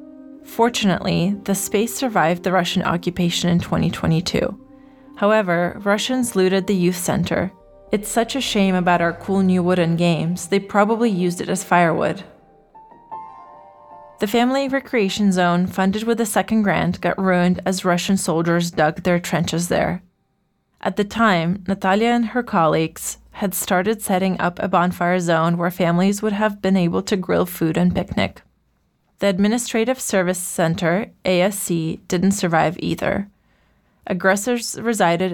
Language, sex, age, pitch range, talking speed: Ukrainian, female, 20-39, 175-210 Hz, 145 wpm